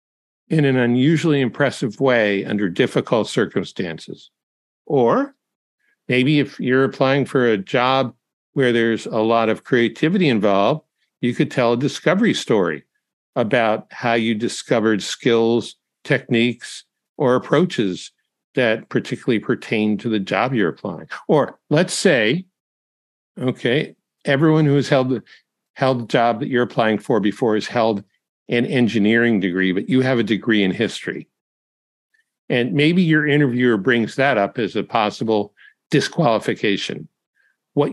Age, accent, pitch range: 60-79, American, 115-145 Hz